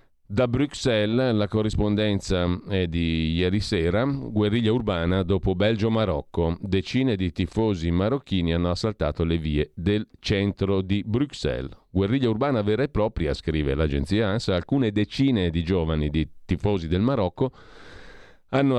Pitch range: 90-115 Hz